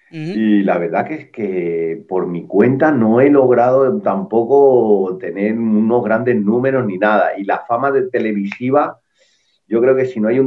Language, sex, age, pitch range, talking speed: Spanish, male, 30-49, 105-130 Hz, 180 wpm